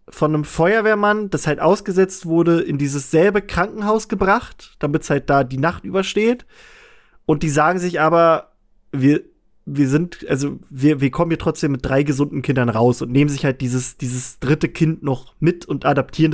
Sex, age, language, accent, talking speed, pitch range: male, 20-39, German, German, 180 wpm, 140-175 Hz